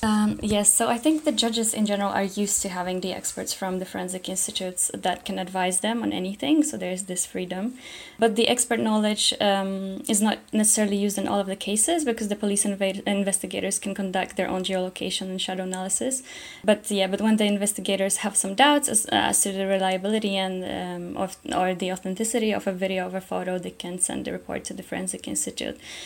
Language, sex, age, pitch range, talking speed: English, female, 10-29, 185-210 Hz, 210 wpm